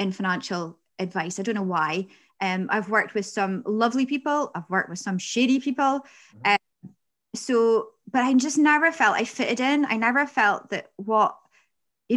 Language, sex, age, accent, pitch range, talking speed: English, female, 20-39, British, 195-240 Hz, 185 wpm